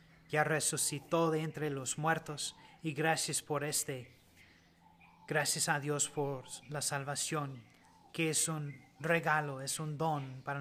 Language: Spanish